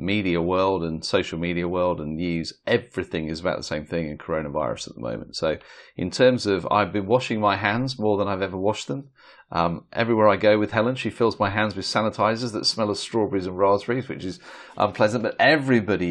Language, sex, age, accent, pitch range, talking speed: English, male, 30-49, British, 90-110 Hz, 210 wpm